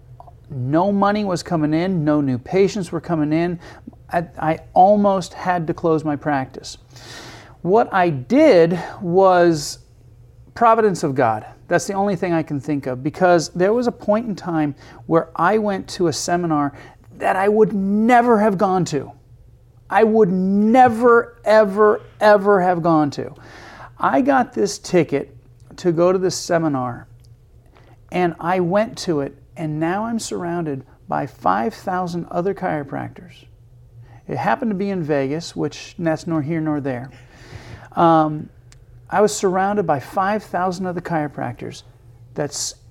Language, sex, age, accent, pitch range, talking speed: English, male, 40-59, American, 125-185 Hz, 145 wpm